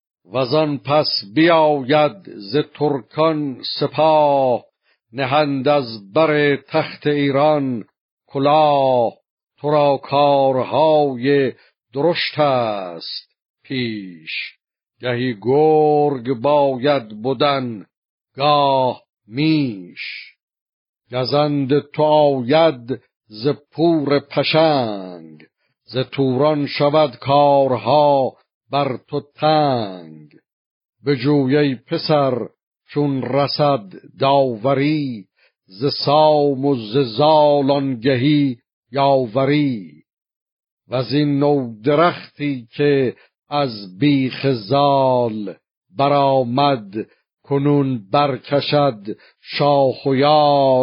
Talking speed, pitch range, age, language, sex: 70 wpm, 130-150 Hz, 60-79, Persian, male